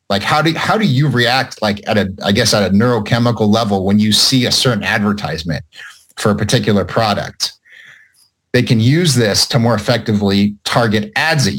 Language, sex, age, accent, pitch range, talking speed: English, male, 30-49, American, 100-130 Hz, 185 wpm